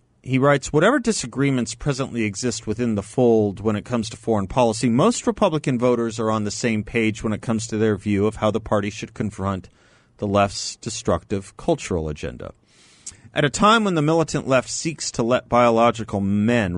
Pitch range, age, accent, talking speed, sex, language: 105-130 Hz, 40-59, American, 185 wpm, male, English